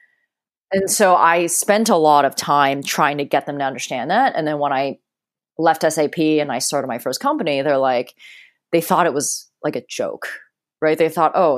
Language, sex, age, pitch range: English, female, 30-49, 145-200 Hz